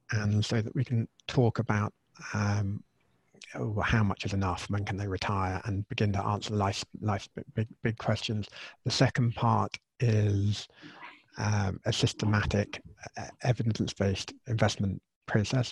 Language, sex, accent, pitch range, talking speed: English, male, British, 100-115 Hz, 140 wpm